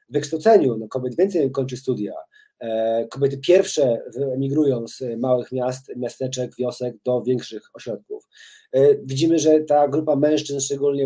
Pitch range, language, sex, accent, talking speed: 130-165 Hz, Polish, male, native, 125 wpm